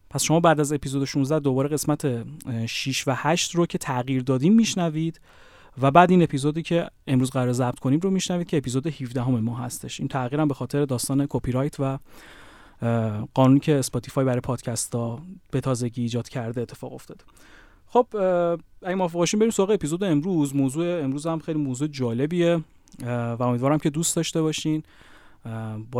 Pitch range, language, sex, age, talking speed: 125-155 Hz, Persian, male, 30-49, 165 wpm